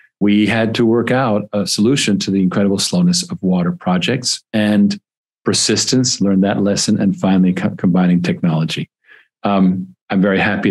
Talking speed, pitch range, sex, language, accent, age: 150 wpm, 95-125 Hz, male, English, American, 40-59